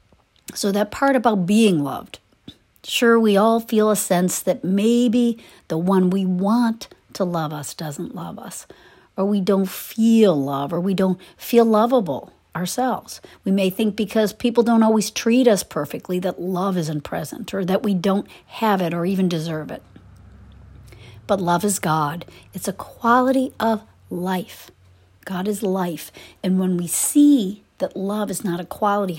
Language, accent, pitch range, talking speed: English, American, 165-220 Hz, 165 wpm